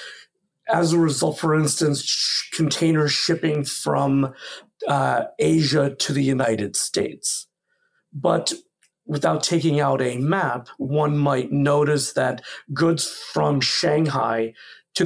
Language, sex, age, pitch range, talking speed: English, male, 50-69, 135-165 Hz, 110 wpm